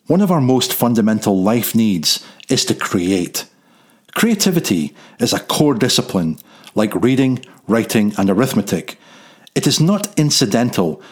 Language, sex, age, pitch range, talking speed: English, male, 40-59, 110-180 Hz, 130 wpm